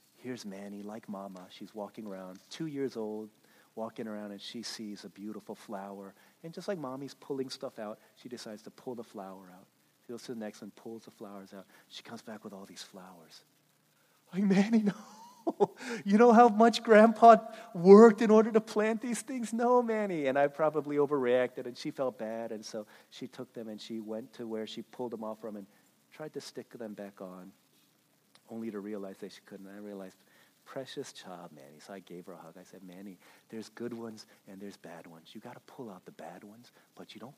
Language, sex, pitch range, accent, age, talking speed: English, male, 100-145 Hz, American, 40-59, 215 wpm